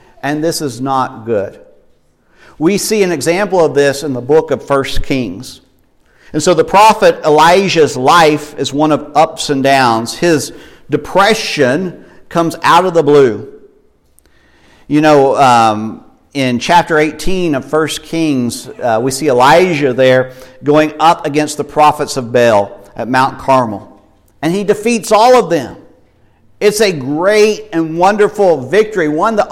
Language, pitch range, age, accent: English, 115-170 Hz, 50-69, American